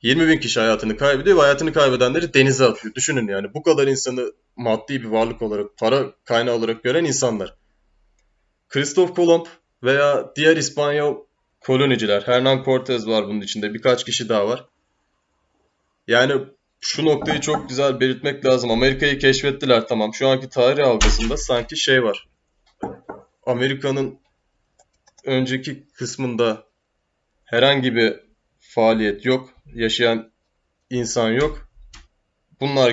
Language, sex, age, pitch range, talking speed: Turkish, male, 20-39, 110-135 Hz, 120 wpm